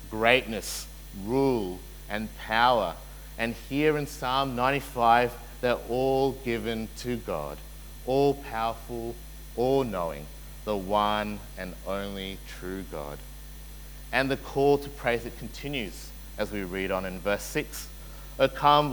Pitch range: 110-140 Hz